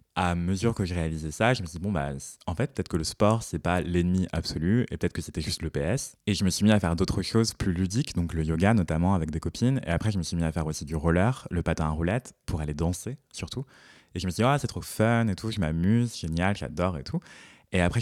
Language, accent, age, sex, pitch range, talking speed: French, French, 20-39, male, 85-105 Hz, 295 wpm